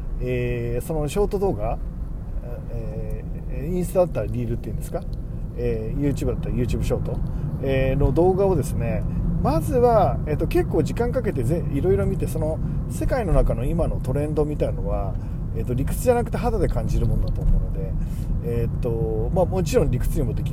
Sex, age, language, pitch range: male, 40-59, Japanese, 110-150 Hz